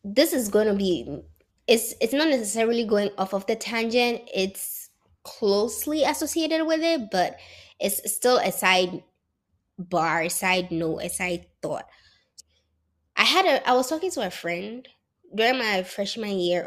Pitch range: 180-245 Hz